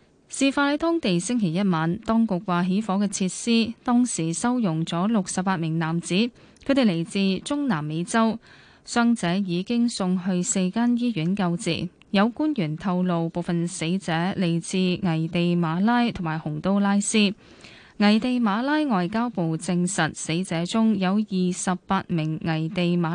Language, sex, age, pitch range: Chinese, female, 10-29, 170-225 Hz